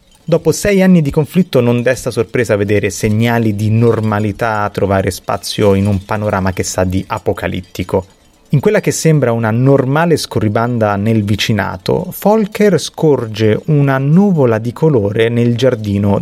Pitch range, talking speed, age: 105-155 Hz, 145 wpm, 30-49